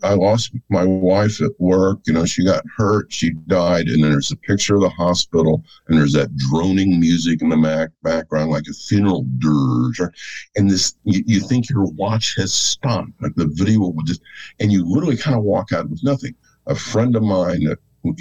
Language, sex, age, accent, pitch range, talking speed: English, male, 50-69, American, 70-100 Hz, 205 wpm